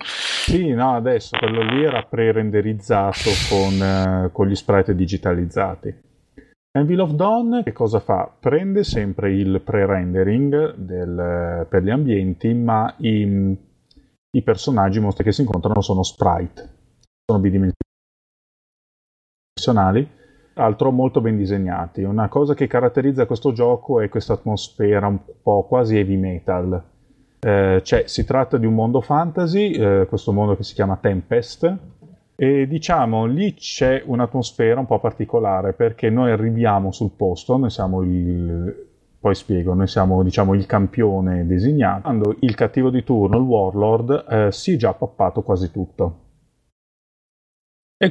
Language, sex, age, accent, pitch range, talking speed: Italian, male, 30-49, native, 95-125 Hz, 135 wpm